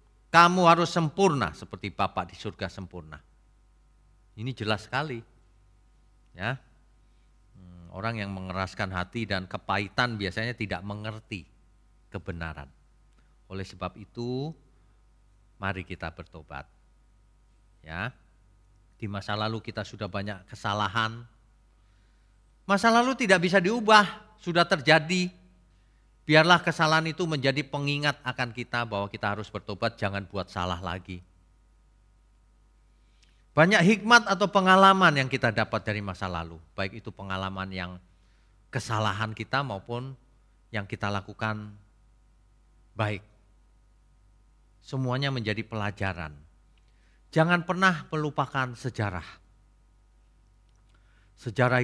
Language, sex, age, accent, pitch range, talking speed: Indonesian, male, 40-59, native, 95-125 Hz, 100 wpm